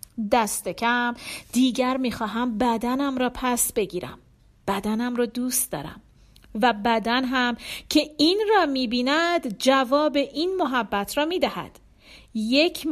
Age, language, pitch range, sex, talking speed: 40-59, Persian, 235-315 Hz, female, 125 wpm